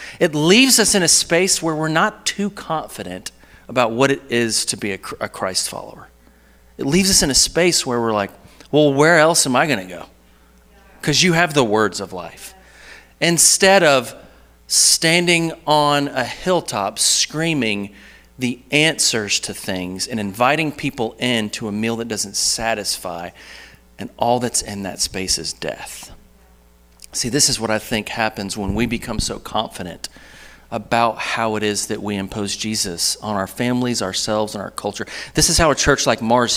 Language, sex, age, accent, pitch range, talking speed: English, male, 40-59, American, 95-140 Hz, 175 wpm